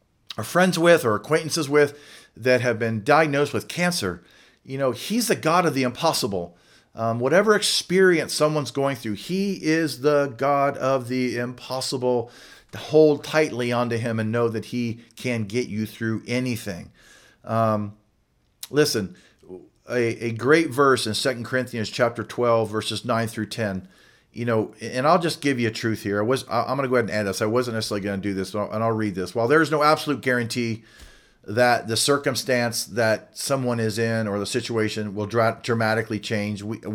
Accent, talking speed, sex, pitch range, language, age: American, 185 wpm, male, 110-140 Hz, English, 40-59